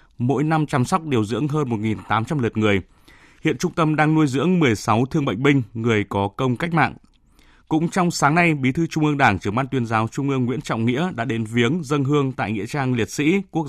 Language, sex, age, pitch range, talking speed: Vietnamese, male, 20-39, 115-155 Hz, 235 wpm